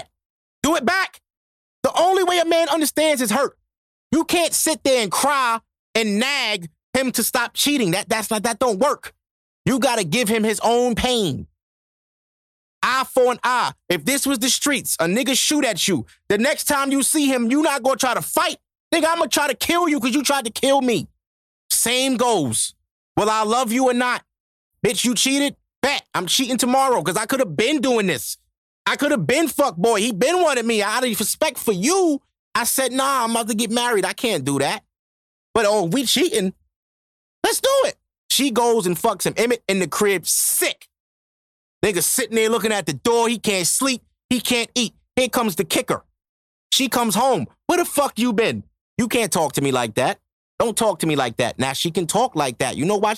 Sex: male